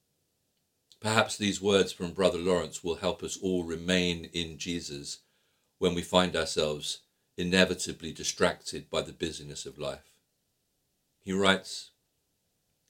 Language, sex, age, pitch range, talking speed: English, male, 50-69, 90-110 Hz, 120 wpm